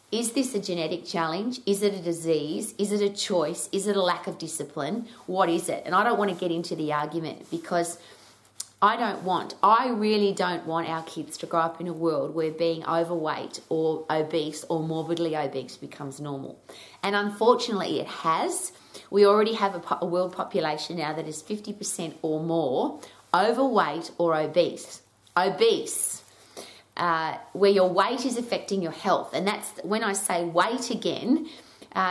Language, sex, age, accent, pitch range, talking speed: English, female, 30-49, Australian, 165-210 Hz, 175 wpm